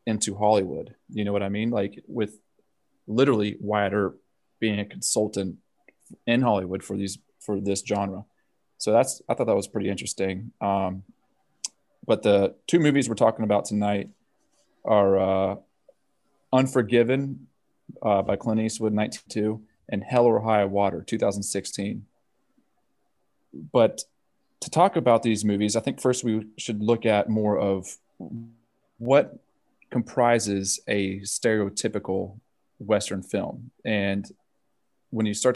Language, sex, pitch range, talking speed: English, male, 100-115 Hz, 130 wpm